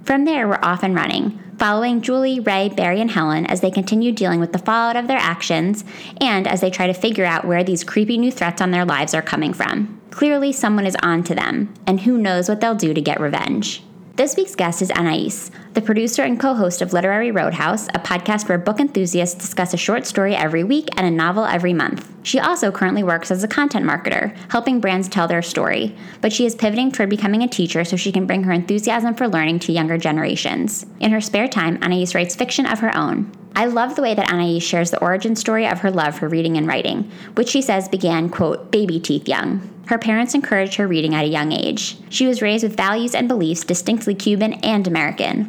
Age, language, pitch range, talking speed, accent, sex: 20-39, English, 175-230 Hz, 225 wpm, American, female